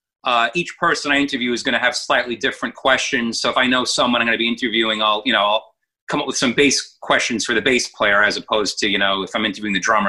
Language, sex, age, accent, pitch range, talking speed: English, male, 30-49, American, 120-150 Hz, 275 wpm